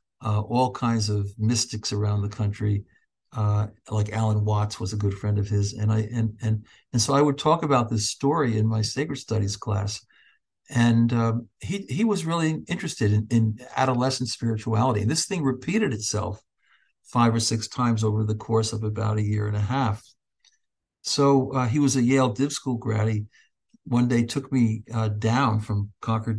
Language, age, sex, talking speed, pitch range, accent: English, 60-79, male, 190 wpm, 110-130 Hz, American